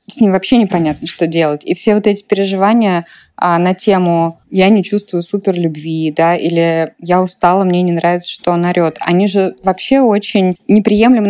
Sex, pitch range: female, 175-210 Hz